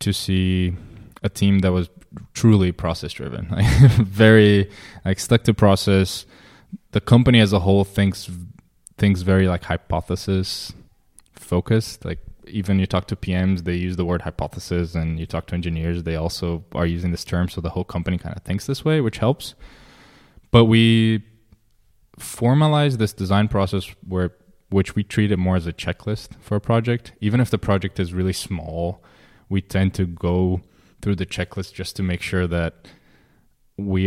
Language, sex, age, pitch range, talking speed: English, male, 20-39, 90-105 Hz, 170 wpm